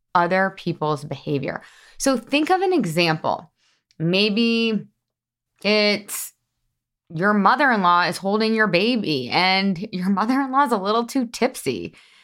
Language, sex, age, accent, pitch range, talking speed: English, female, 20-39, American, 175-245 Hz, 120 wpm